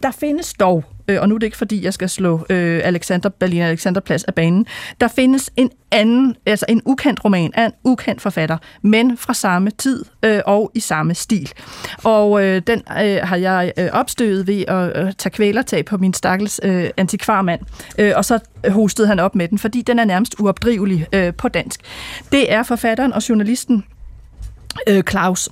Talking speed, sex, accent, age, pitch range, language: 165 wpm, female, native, 30-49, 185-225 Hz, Danish